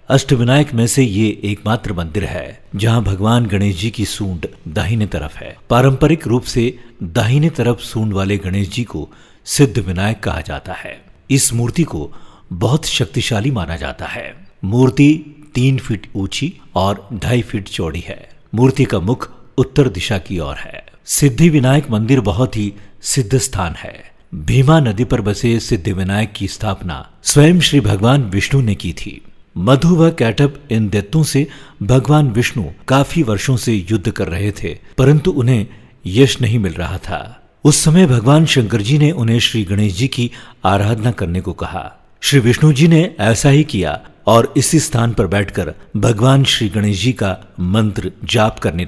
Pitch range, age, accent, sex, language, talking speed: 100-135 Hz, 50-69, native, male, Hindi, 170 wpm